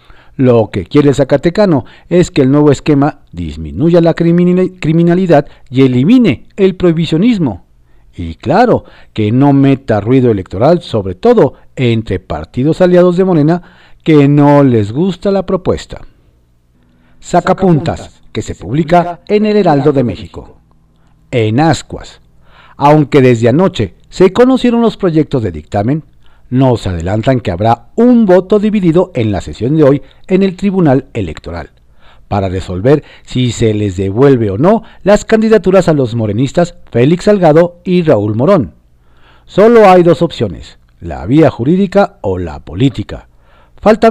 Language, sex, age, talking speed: Spanish, male, 50-69, 140 wpm